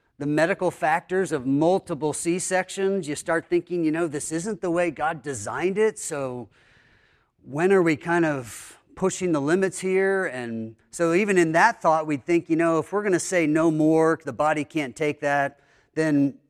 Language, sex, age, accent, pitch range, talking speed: English, male, 40-59, American, 120-160 Hz, 190 wpm